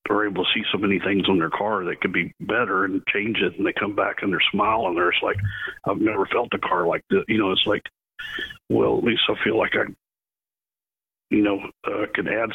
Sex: male